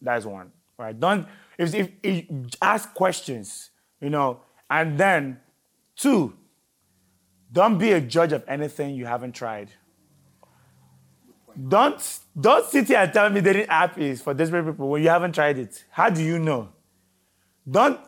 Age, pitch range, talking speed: 30-49, 130-175 Hz, 155 wpm